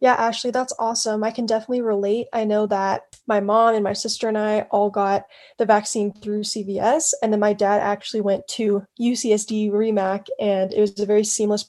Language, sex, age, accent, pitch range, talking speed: English, female, 10-29, American, 200-240 Hz, 195 wpm